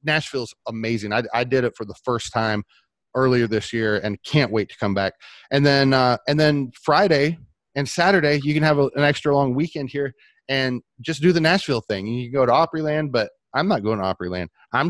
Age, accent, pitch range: 30-49, American, 110-145 Hz